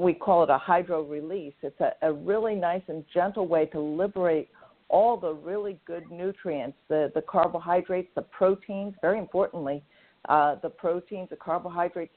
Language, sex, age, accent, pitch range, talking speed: English, female, 50-69, American, 160-200 Hz, 160 wpm